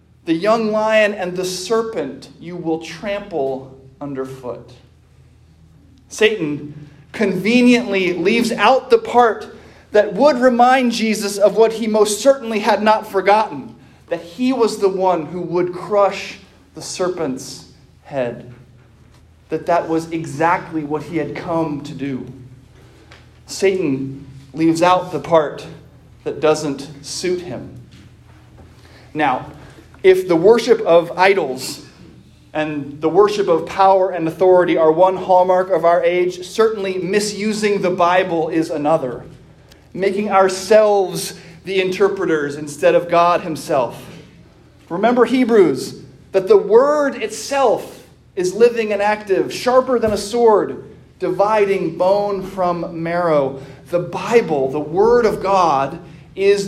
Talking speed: 125 wpm